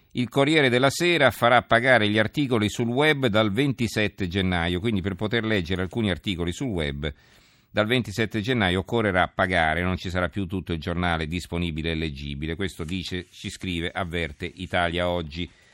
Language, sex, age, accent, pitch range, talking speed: Italian, male, 50-69, native, 90-115 Hz, 165 wpm